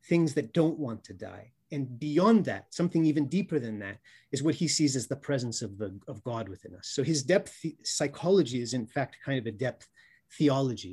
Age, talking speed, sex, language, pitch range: 30-49, 210 wpm, male, English, 115-150 Hz